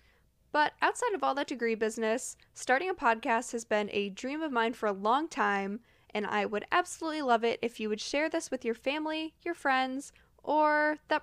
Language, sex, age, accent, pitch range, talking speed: English, female, 10-29, American, 215-295 Hz, 205 wpm